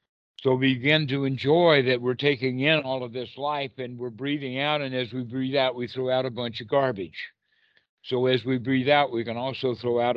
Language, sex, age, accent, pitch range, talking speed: English, male, 60-79, American, 105-130 Hz, 230 wpm